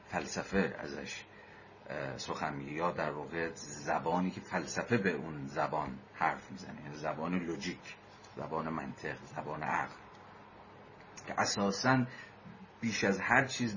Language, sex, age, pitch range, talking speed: Persian, male, 50-69, 85-105 Hz, 115 wpm